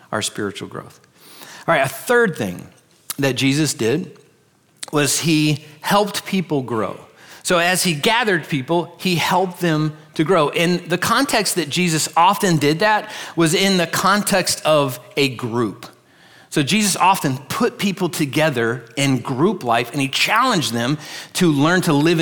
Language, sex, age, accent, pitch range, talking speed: English, male, 40-59, American, 135-175 Hz, 155 wpm